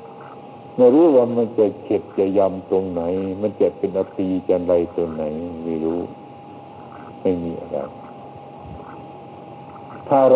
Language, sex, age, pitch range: Thai, male, 60-79, 95-130 Hz